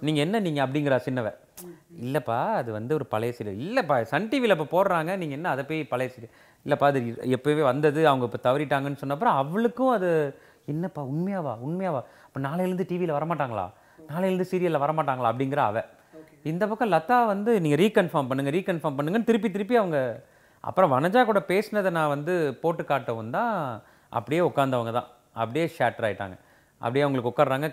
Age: 30-49